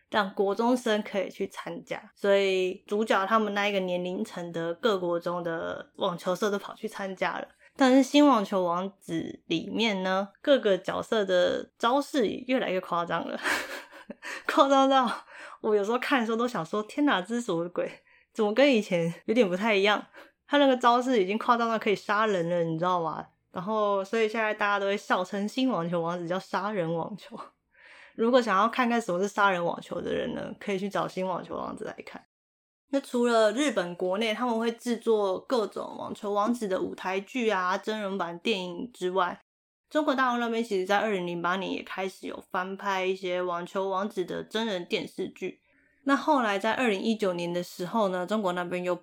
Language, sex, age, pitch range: Chinese, female, 20-39, 180-230 Hz